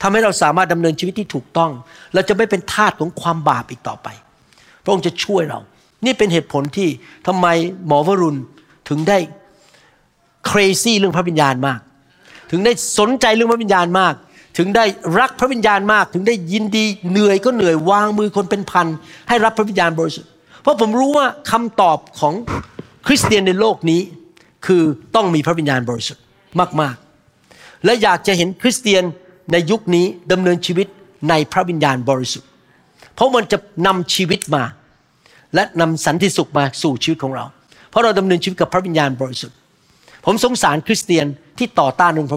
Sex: male